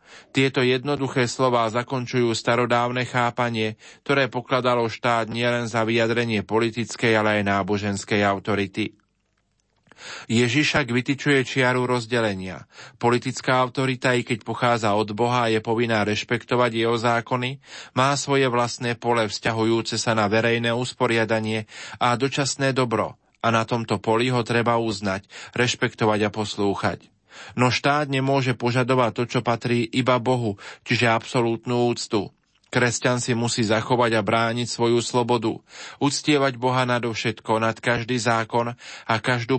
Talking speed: 125 wpm